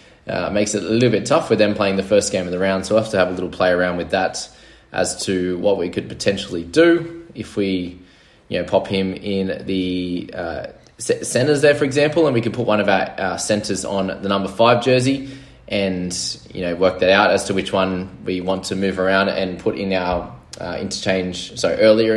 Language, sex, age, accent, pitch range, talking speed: English, male, 20-39, Australian, 90-110 Hz, 225 wpm